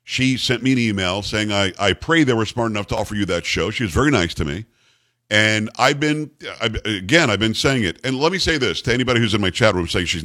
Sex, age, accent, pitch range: male, 50-69, American, 105-135 Hz